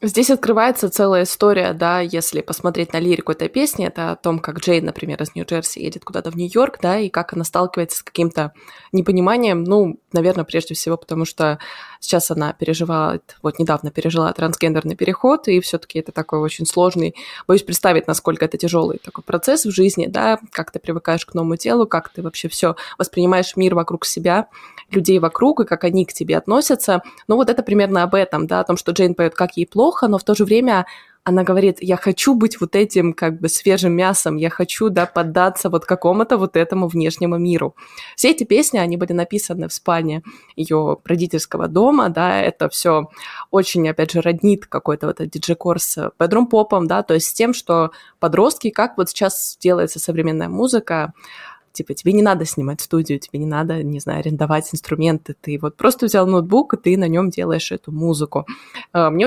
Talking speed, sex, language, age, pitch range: 190 wpm, female, Russian, 20-39, 165-195 Hz